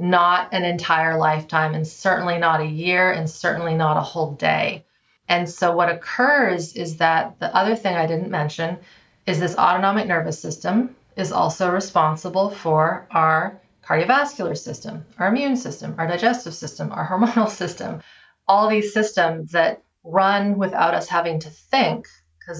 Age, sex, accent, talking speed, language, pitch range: 30-49, female, American, 155 wpm, English, 165-190 Hz